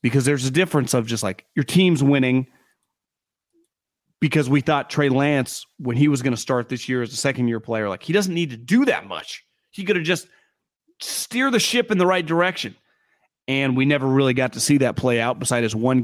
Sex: male